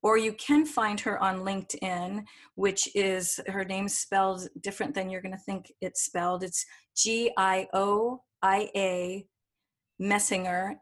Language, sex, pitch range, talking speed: English, female, 190-225 Hz, 120 wpm